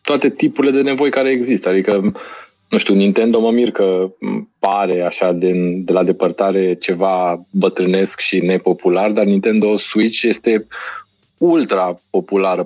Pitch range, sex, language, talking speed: 90-115 Hz, male, Romanian, 135 wpm